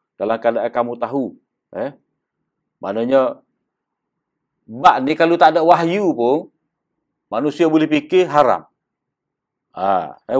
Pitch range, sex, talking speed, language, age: 135-180 Hz, male, 110 wpm, Malay, 50-69